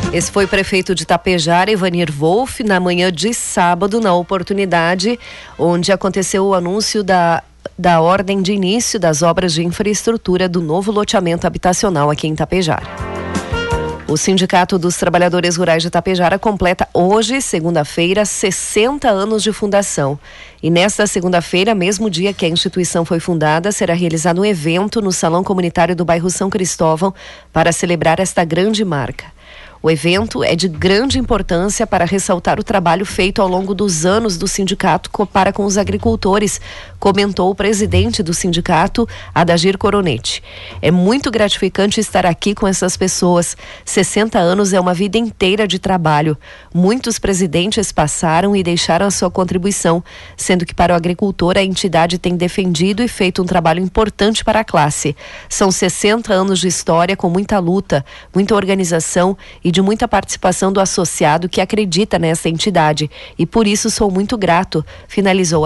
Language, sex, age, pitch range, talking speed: Portuguese, female, 40-59, 170-200 Hz, 155 wpm